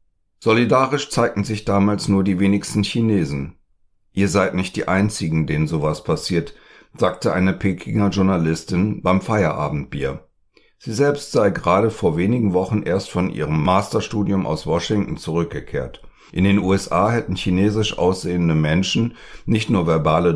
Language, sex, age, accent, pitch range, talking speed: German, male, 60-79, German, 85-105 Hz, 135 wpm